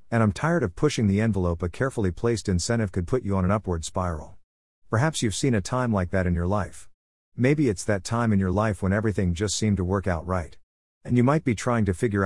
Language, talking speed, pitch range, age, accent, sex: English, 245 wpm, 90-125 Hz, 50-69, American, male